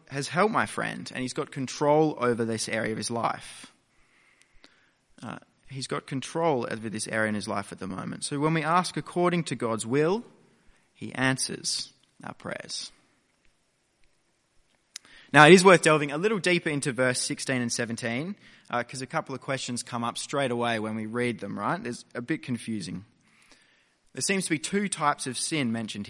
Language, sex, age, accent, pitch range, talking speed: English, male, 20-39, Australian, 120-155 Hz, 185 wpm